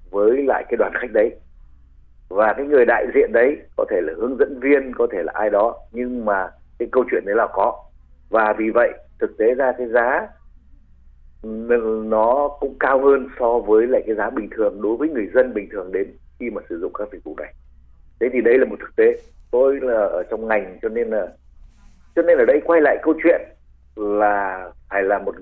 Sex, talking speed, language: male, 215 wpm, Vietnamese